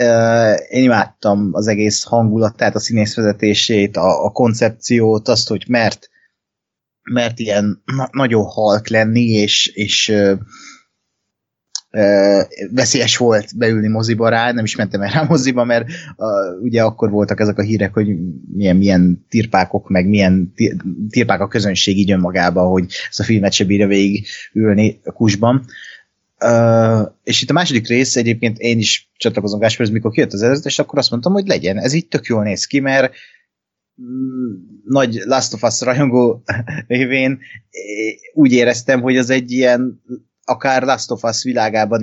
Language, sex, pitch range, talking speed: Hungarian, male, 100-120 Hz, 150 wpm